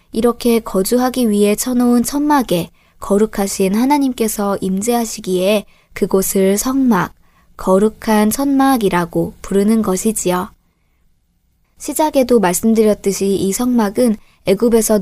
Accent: native